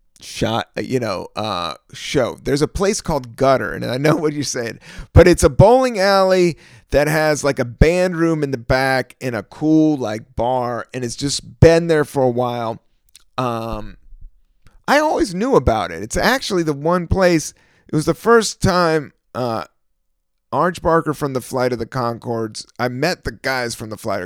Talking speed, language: 185 wpm, English